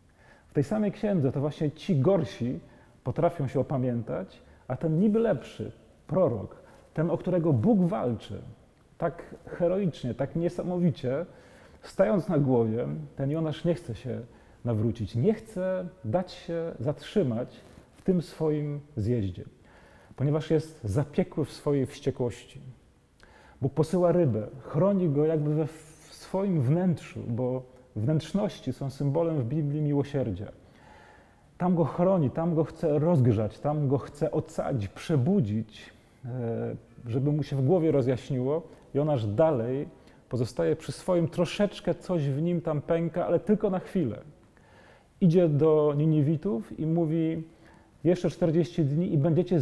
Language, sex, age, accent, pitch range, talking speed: Polish, male, 40-59, native, 125-170 Hz, 135 wpm